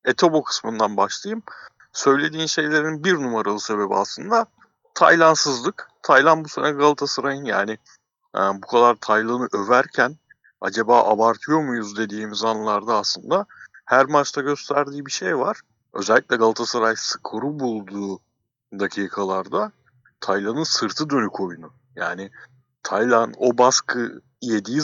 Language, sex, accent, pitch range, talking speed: Turkish, male, native, 110-140 Hz, 110 wpm